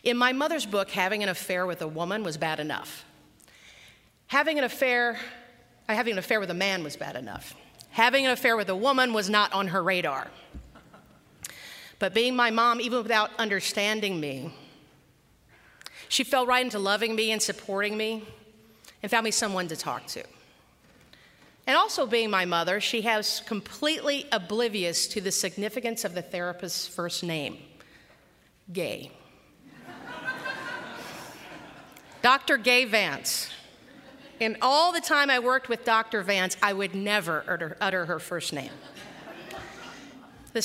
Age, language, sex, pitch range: 40-59, English, female, 190-250 Hz